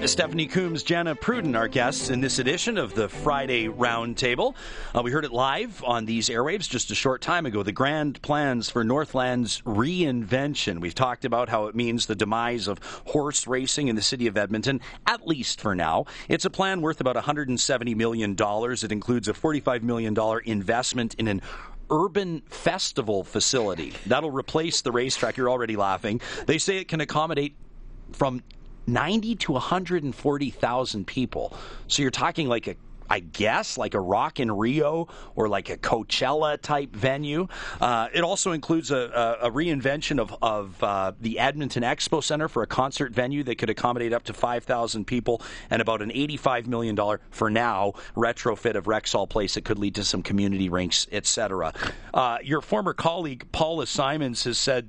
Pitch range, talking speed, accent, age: 115-145 Hz, 175 wpm, American, 40-59